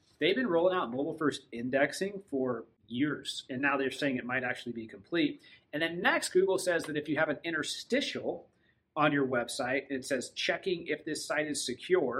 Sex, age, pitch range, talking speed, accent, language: male, 30-49, 135-200 Hz, 195 wpm, American, English